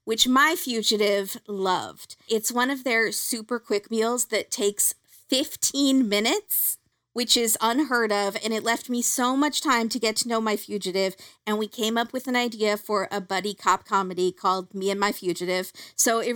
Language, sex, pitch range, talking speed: English, female, 205-265 Hz, 185 wpm